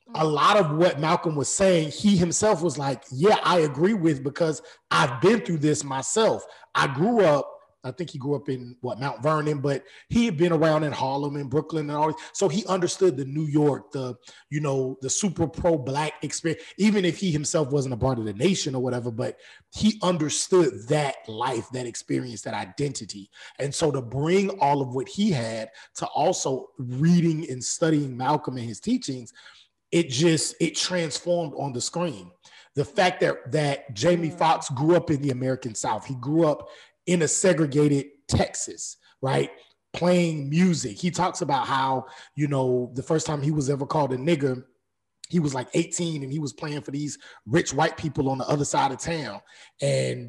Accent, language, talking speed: American, English, 190 wpm